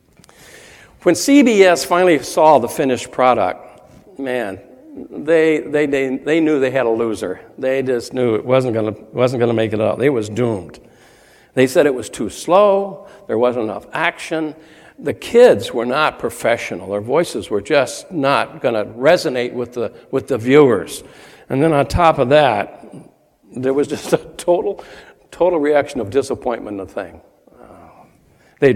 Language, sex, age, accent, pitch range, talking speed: English, male, 60-79, American, 115-185 Hz, 165 wpm